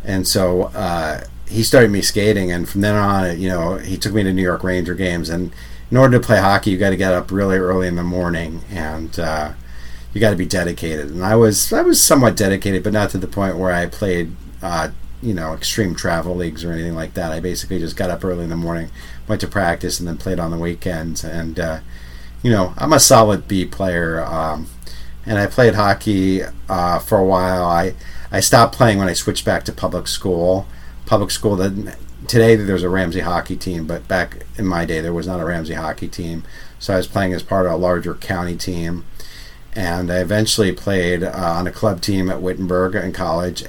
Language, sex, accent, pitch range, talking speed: English, male, American, 85-100 Hz, 220 wpm